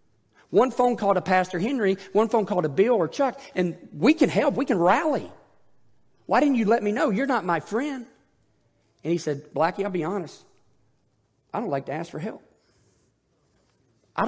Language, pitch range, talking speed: English, 140-190 Hz, 190 wpm